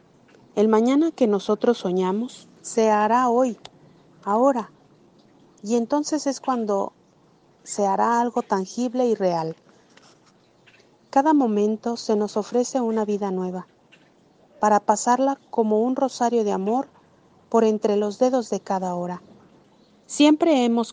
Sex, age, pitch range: female, 40-59, 200-245 Hz